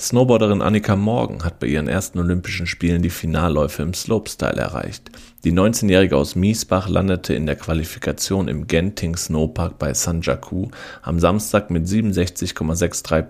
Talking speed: 145 wpm